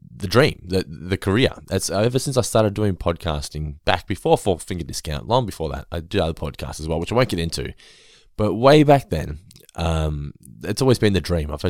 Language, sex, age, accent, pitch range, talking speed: English, male, 20-39, Australian, 85-110 Hz, 220 wpm